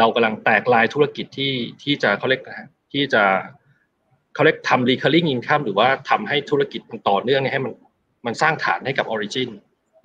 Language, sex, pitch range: Thai, male, 120-150 Hz